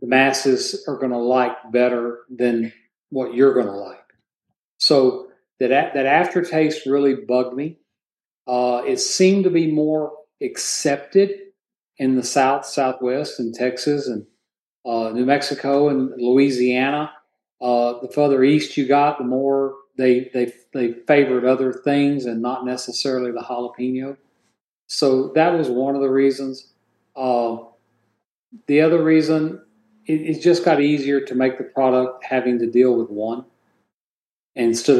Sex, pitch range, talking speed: male, 125-155 Hz, 140 wpm